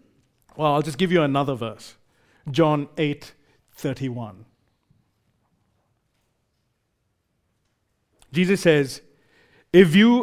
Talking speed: 80 wpm